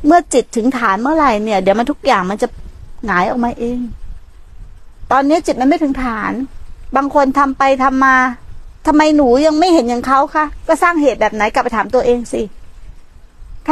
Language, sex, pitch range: Thai, female, 240-300 Hz